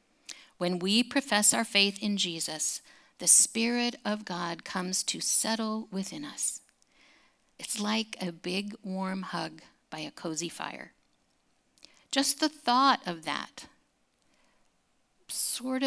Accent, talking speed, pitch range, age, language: American, 120 wpm, 195-255 Hz, 50-69, English